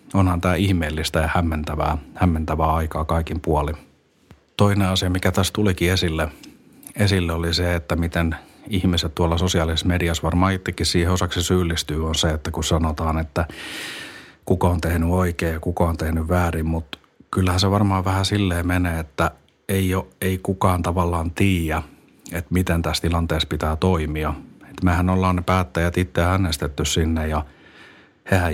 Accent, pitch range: native, 80-95 Hz